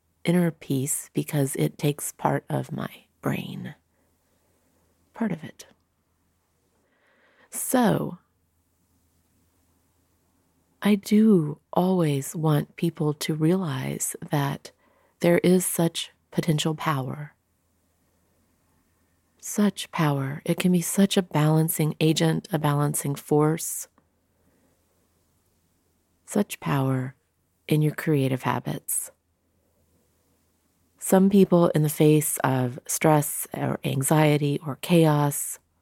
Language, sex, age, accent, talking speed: English, female, 40-59, American, 90 wpm